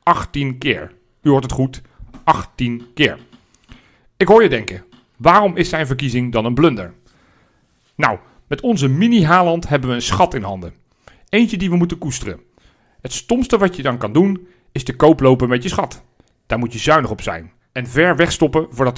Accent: Belgian